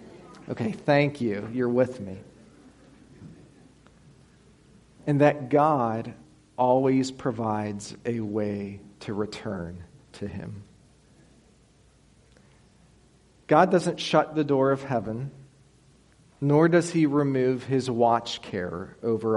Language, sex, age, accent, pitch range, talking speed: English, male, 40-59, American, 105-135 Hz, 100 wpm